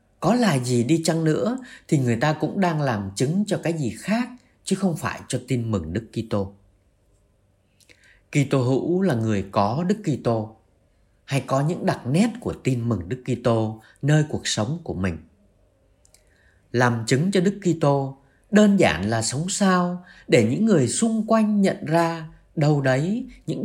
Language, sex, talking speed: Vietnamese, male, 175 wpm